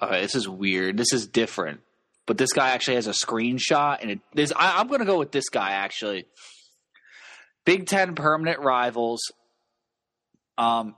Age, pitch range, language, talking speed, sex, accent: 20-39, 115-150 Hz, English, 170 wpm, male, American